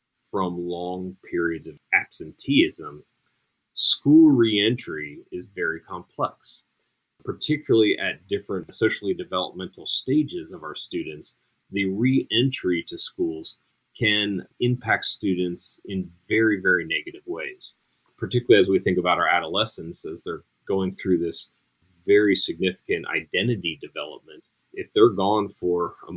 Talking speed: 120 wpm